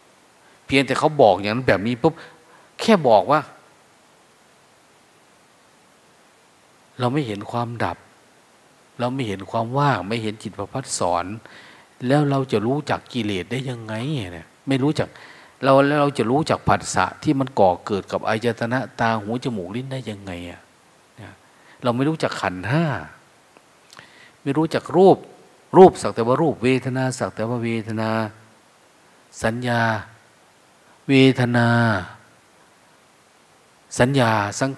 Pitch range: 105-135 Hz